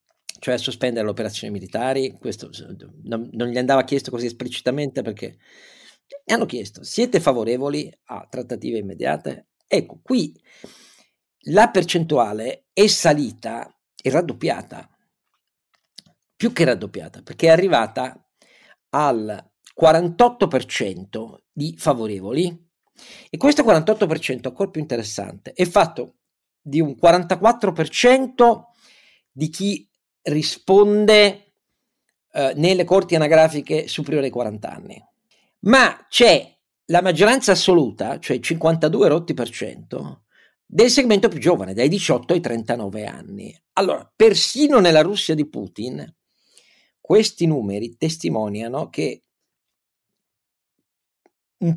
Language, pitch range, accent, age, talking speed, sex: Italian, 130-200 Hz, native, 50-69, 105 wpm, male